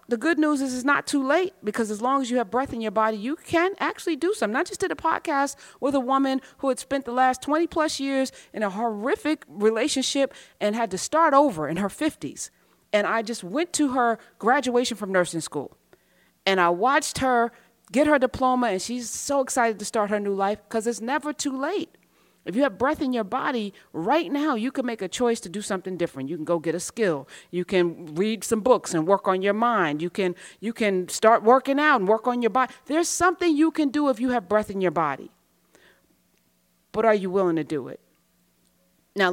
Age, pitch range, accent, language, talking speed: 40-59, 165-255 Hz, American, English, 225 wpm